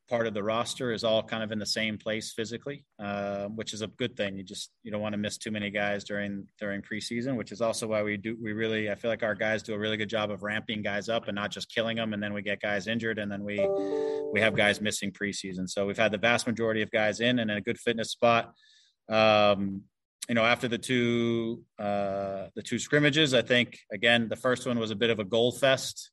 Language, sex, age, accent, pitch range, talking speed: English, male, 20-39, American, 105-115 Hz, 255 wpm